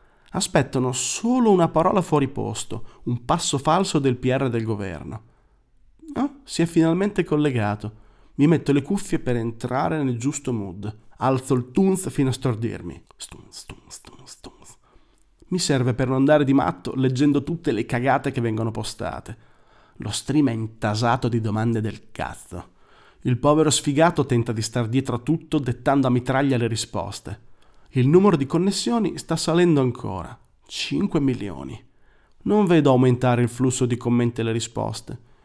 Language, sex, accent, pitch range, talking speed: Italian, male, native, 115-155 Hz, 145 wpm